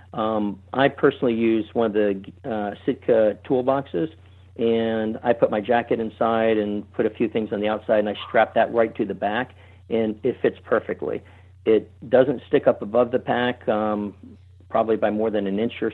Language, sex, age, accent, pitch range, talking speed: English, male, 50-69, American, 100-115 Hz, 190 wpm